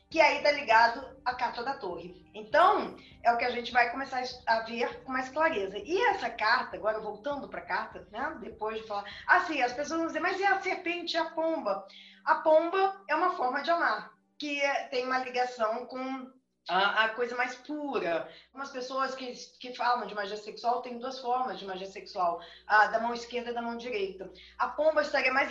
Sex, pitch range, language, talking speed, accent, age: female, 210-280 Hz, Portuguese, 205 wpm, Brazilian, 20-39